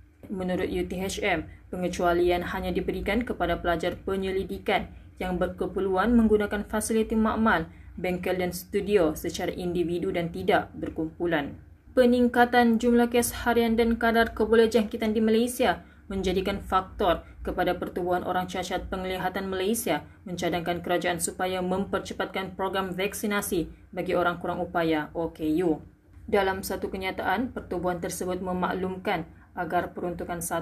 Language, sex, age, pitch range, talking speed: Malay, female, 20-39, 180-215 Hz, 110 wpm